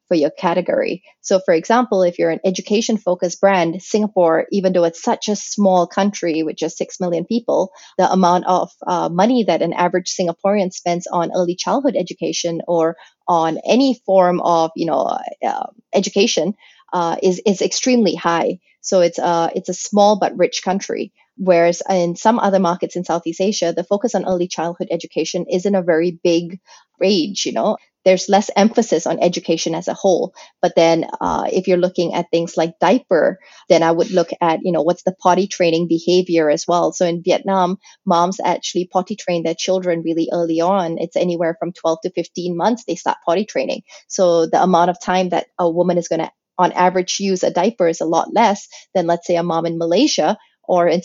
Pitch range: 170-195 Hz